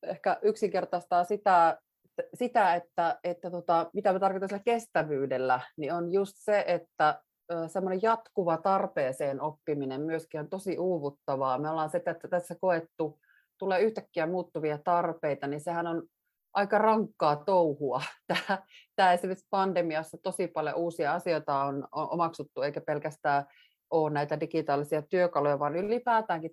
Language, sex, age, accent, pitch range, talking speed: Finnish, female, 30-49, native, 150-185 Hz, 130 wpm